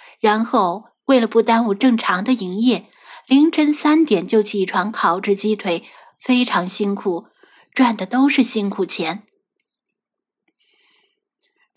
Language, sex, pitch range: Chinese, female, 205-270 Hz